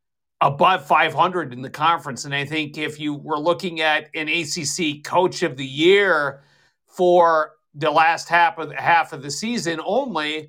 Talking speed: 170 wpm